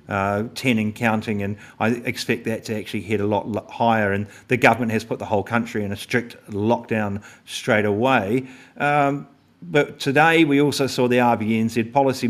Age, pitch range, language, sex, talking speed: 50-69, 105-125 Hz, English, male, 180 wpm